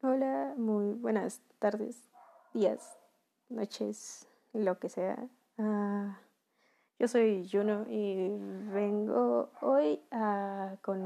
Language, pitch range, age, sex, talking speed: Spanish, 205-245 Hz, 20-39, female, 85 wpm